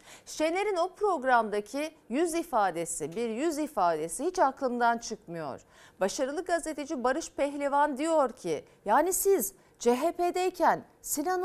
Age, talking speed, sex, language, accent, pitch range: 40-59, 110 wpm, female, Turkish, native, 210-325 Hz